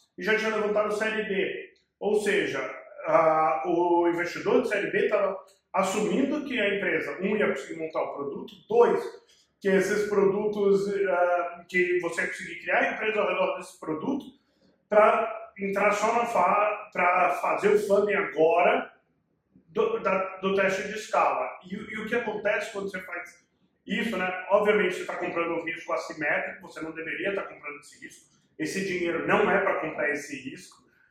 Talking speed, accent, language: 175 wpm, Brazilian, Portuguese